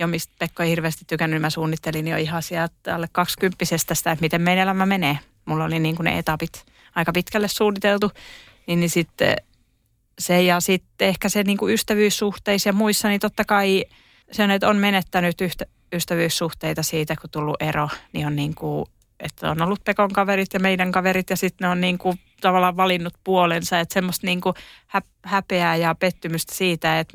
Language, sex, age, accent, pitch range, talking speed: Finnish, female, 30-49, native, 160-195 Hz, 185 wpm